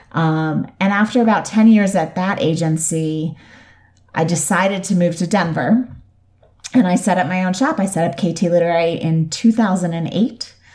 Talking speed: 160 wpm